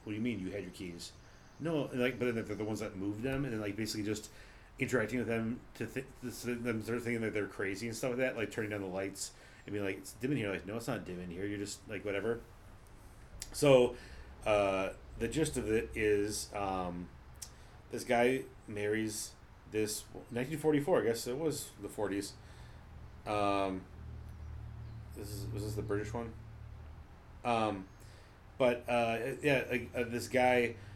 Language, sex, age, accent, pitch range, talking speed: English, male, 30-49, American, 100-120 Hz, 190 wpm